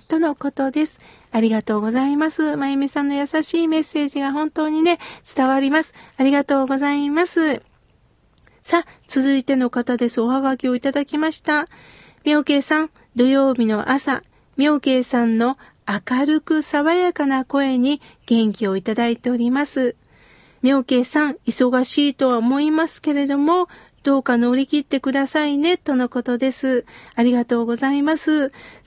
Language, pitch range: Japanese, 245-300 Hz